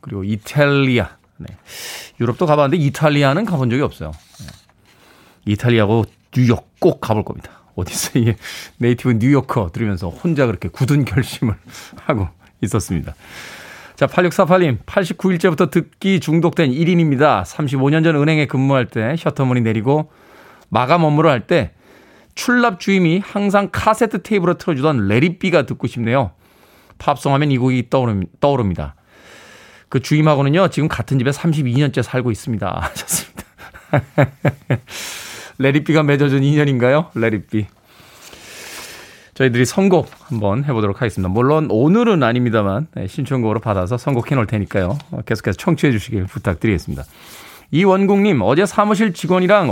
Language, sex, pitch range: Korean, male, 115-160 Hz